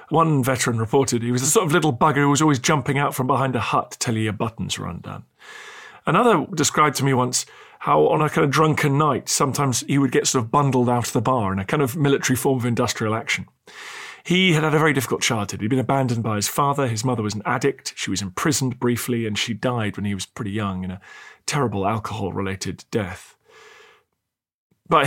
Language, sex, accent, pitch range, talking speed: English, male, British, 115-155 Hz, 225 wpm